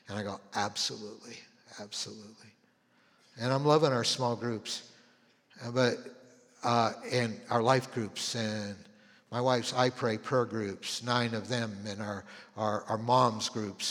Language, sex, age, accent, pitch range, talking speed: English, male, 60-79, American, 110-125 Hz, 140 wpm